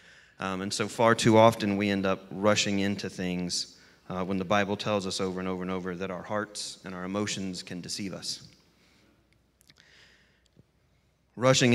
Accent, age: American, 30-49